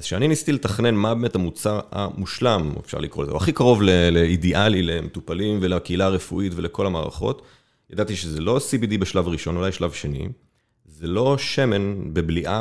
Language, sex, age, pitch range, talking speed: Hebrew, male, 30-49, 85-115 Hz, 160 wpm